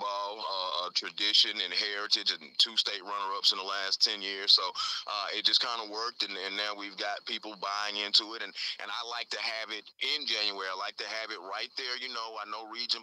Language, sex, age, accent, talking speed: English, male, 30-49, American, 230 wpm